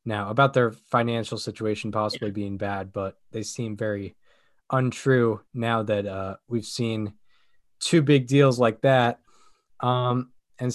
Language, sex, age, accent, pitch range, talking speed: English, male, 20-39, American, 115-140 Hz, 140 wpm